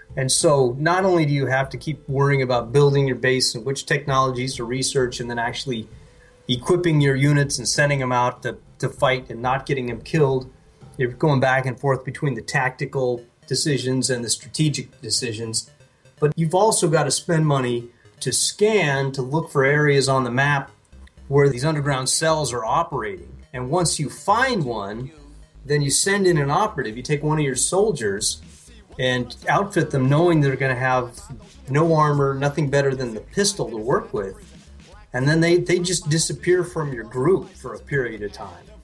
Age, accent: 30-49, American